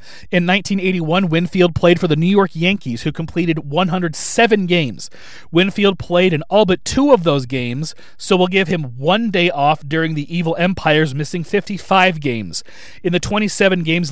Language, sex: English, male